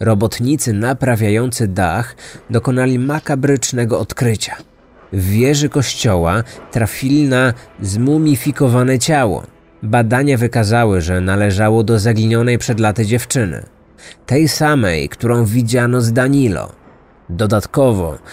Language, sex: Polish, male